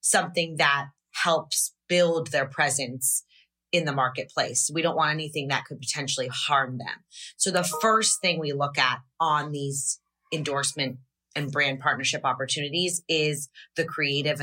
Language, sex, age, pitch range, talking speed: Bulgarian, female, 30-49, 140-170 Hz, 145 wpm